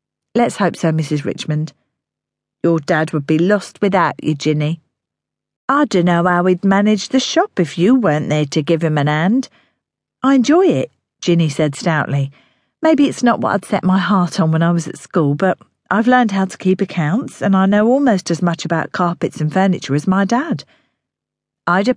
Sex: female